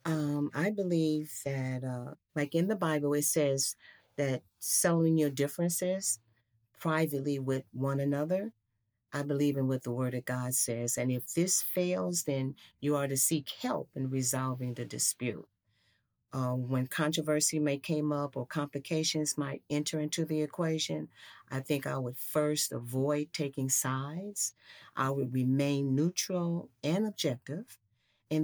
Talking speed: 150 wpm